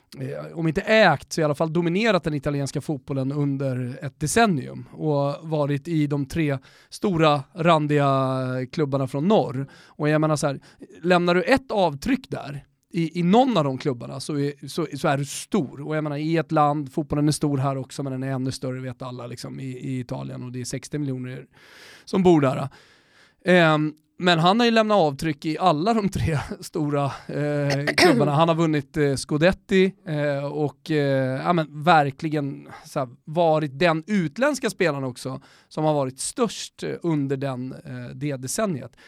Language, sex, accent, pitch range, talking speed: Swedish, male, native, 140-170 Hz, 180 wpm